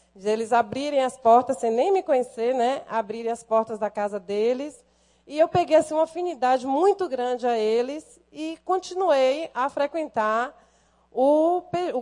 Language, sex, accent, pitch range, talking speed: Portuguese, female, Brazilian, 220-290 Hz, 155 wpm